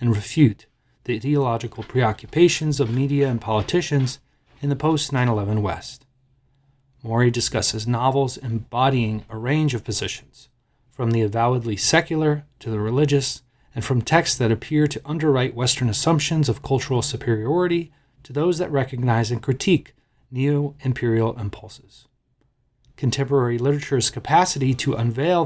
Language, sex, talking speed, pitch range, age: English, male, 125 wpm, 120-145 Hz, 30-49